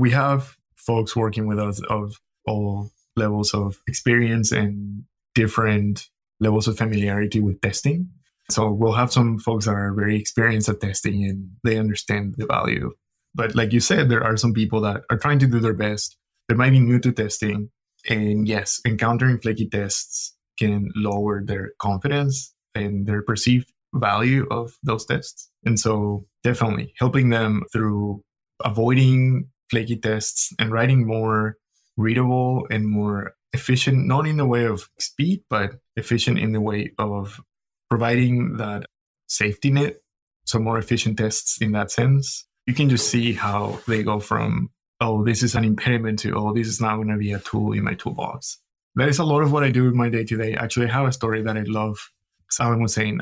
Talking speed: 180 wpm